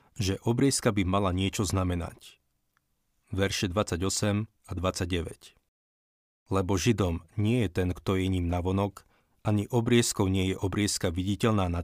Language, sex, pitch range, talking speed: Slovak, male, 95-110 Hz, 130 wpm